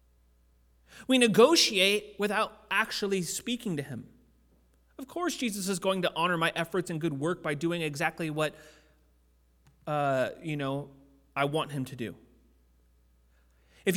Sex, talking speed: male, 140 wpm